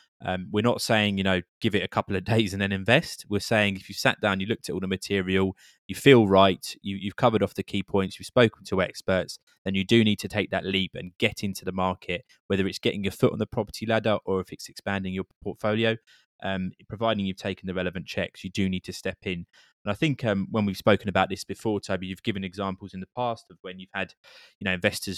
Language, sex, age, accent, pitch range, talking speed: English, male, 20-39, British, 95-110 Hz, 250 wpm